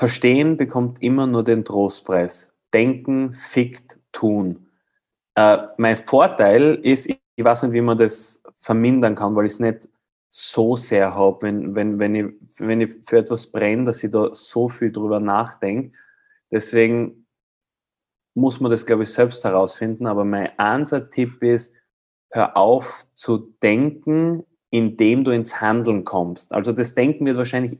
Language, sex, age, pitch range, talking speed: German, male, 20-39, 110-135 Hz, 150 wpm